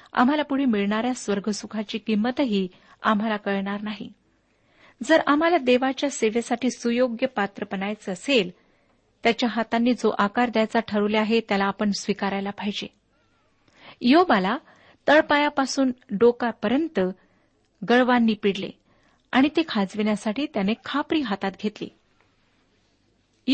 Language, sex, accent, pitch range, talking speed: Marathi, female, native, 205-260 Hz, 100 wpm